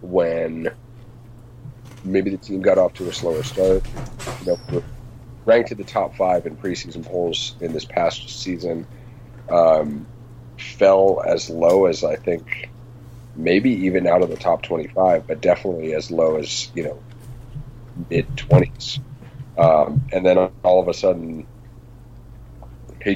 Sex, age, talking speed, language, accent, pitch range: male, 40-59, 140 wpm, English, American, 90-120 Hz